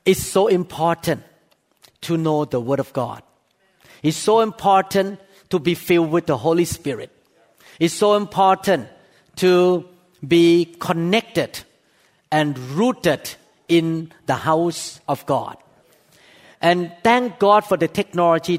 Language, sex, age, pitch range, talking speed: English, male, 50-69, 155-190 Hz, 125 wpm